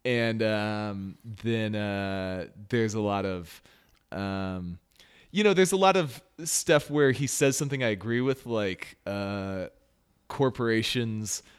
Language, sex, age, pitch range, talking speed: English, male, 20-39, 95-130 Hz, 135 wpm